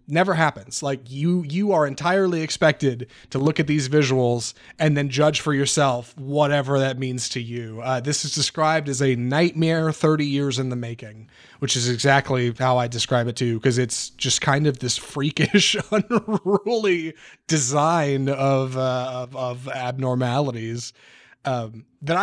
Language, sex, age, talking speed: English, male, 30-49, 160 wpm